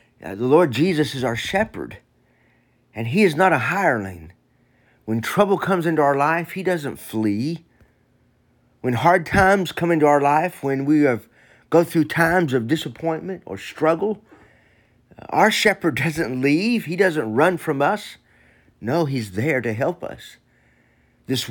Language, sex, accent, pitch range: English, male, American, 115-170 Hz